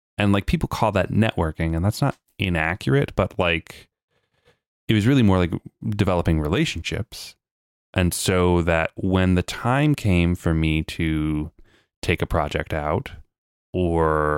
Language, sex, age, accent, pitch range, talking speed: English, male, 30-49, American, 80-105 Hz, 140 wpm